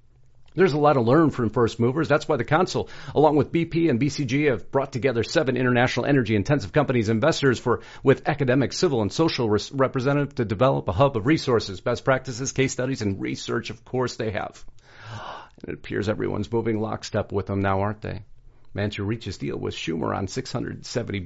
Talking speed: 185 wpm